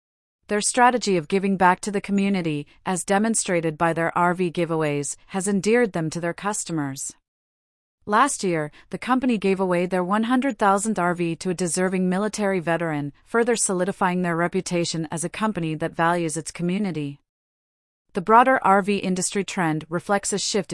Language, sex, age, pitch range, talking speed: English, female, 30-49, 165-205 Hz, 155 wpm